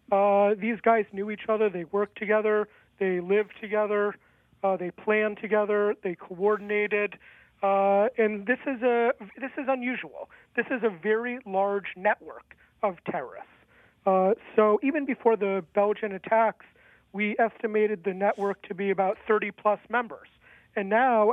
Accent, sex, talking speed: American, male, 145 wpm